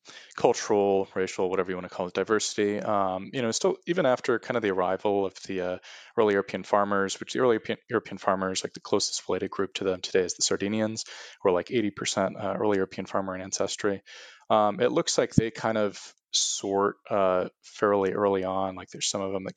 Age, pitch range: 20-39, 95-105 Hz